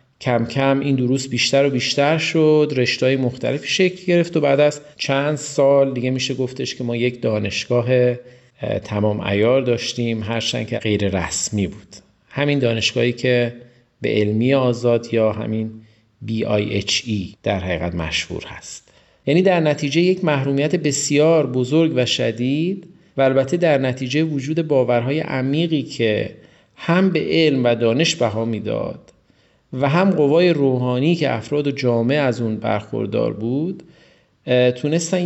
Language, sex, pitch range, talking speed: Persian, male, 115-150 Hz, 140 wpm